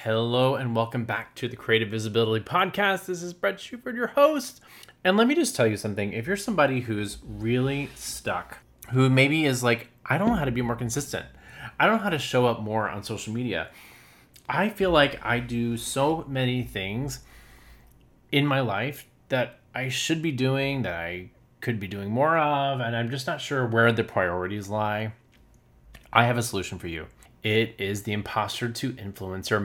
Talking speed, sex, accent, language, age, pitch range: 190 wpm, male, American, English, 20-39, 105-135 Hz